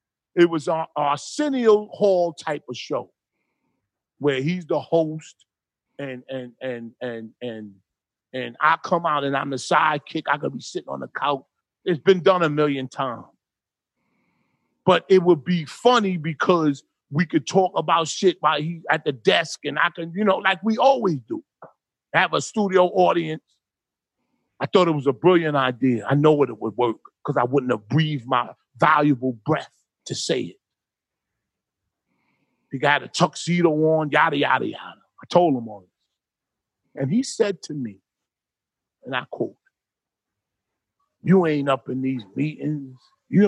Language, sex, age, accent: English, male, 40-59, American